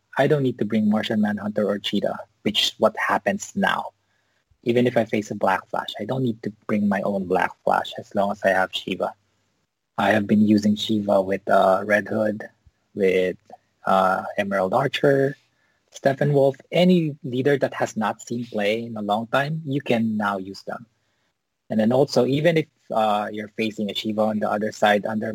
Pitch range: 100-120 Hz